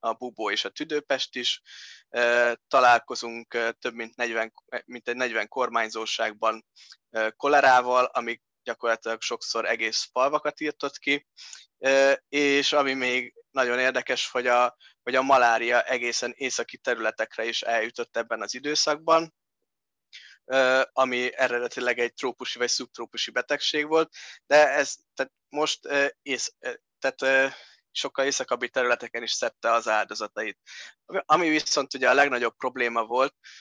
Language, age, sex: Hungarian, 20-39, male